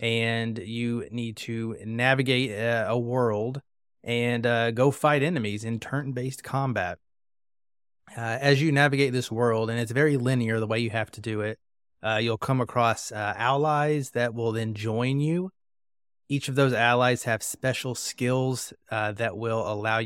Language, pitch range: English, 110-130 Hz